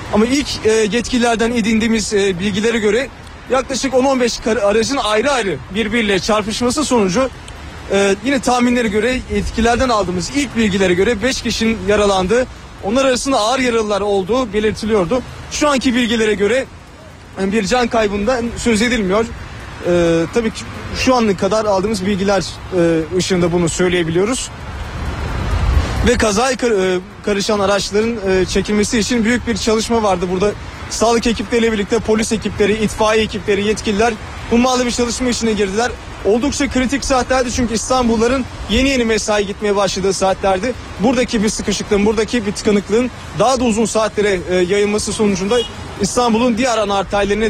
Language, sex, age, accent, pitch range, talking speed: Turkish, male, 30-49, native, 200-240 Hz, 130 wpm